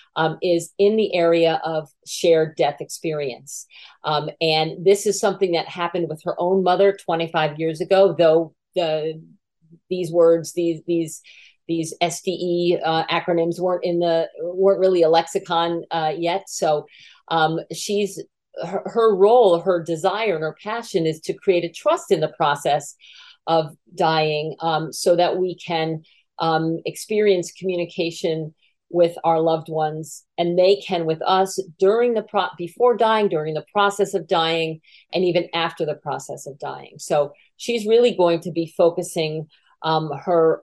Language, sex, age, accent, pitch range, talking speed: English, female, 50-69, American, 160-190 Hz, 155 wpm